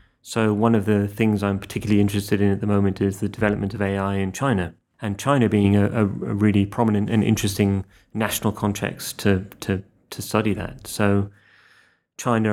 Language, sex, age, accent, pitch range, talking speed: English, male, 30-49, British, 100-110 Hz, 175 wpm